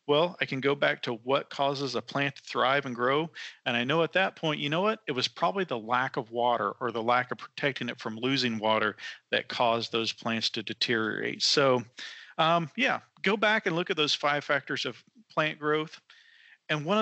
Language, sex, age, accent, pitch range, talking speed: English, male, 40-59, American, 120-155 Hz, 215 wpm